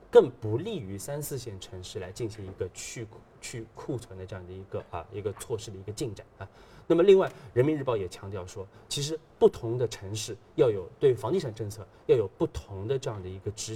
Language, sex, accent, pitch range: Chinese, male, native, 100-125 Hz